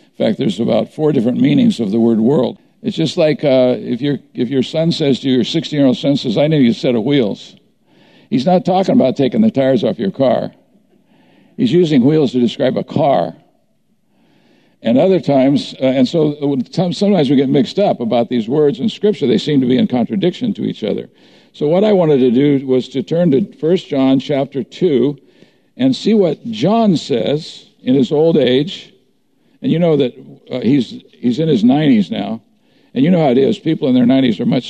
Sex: male